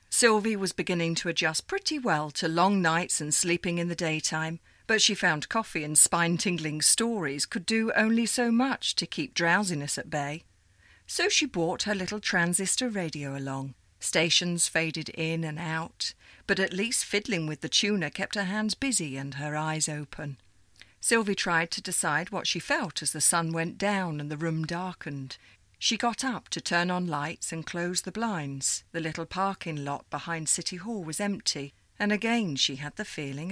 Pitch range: 145-200 Hz